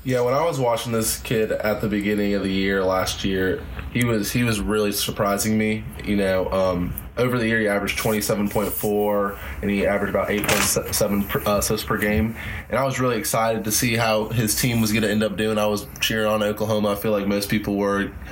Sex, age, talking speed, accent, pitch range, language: male, 20-39, 215 wpm, American, 100-110 Hz, English